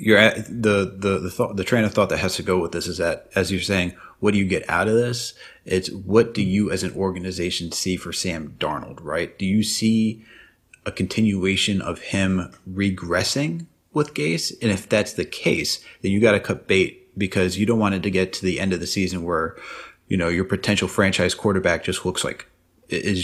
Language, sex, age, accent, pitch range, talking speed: English, male, 30-49, American, 90-105 Hz, 220 wpm